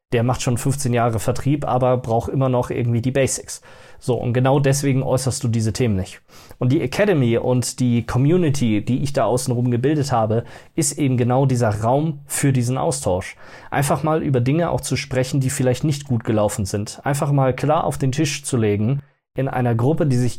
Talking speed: 200 wpm